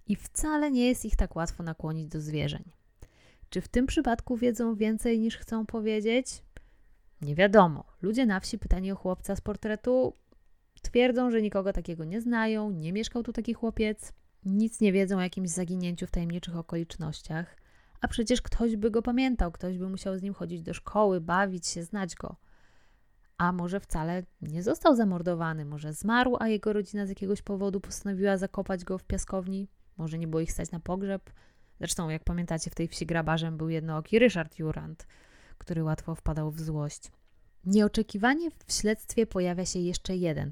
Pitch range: 165-220 Hz